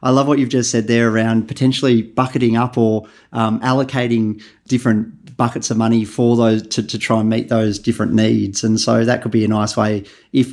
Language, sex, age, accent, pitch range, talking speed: English, male, 30-49, Australian, 115-130 Hz, 210 wpm